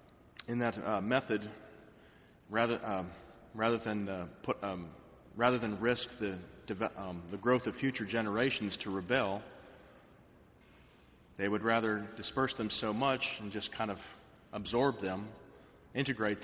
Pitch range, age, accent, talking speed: 100-120 Hz, 40-59, American, 140 wpm